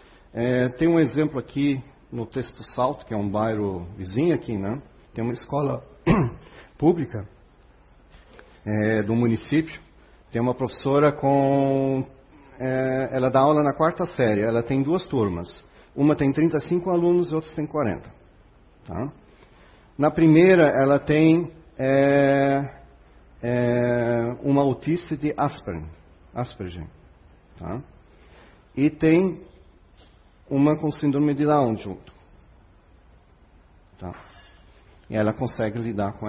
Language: Portuguese